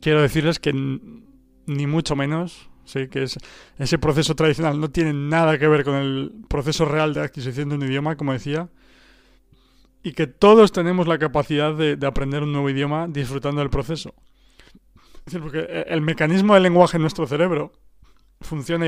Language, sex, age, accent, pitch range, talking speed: Spanish, male, 30-49, Spanish, 135-160 Hz, 180 wpm